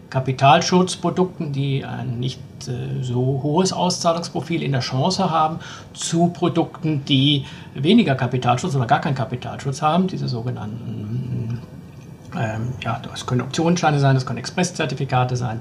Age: 50-69